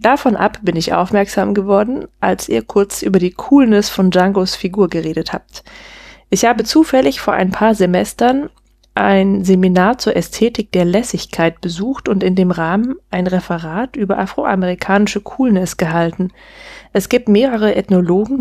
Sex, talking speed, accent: female, 145 wpm, German